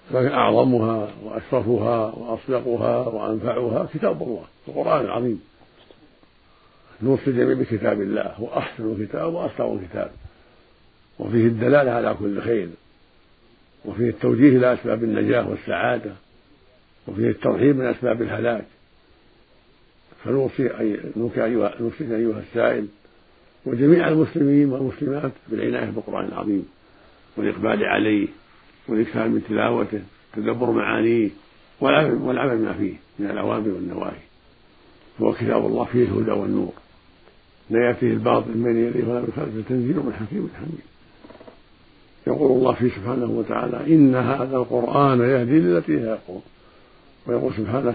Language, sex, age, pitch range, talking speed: Arabic, male, 50-69, 110-125 Hz, 105 wpm